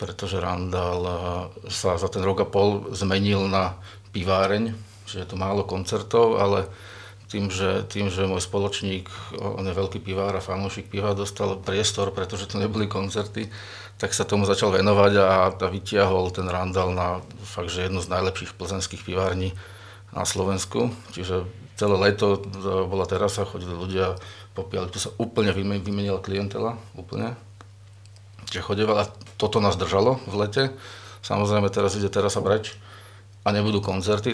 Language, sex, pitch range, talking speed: Slovak, male, 95-105 Hz, 150 wpm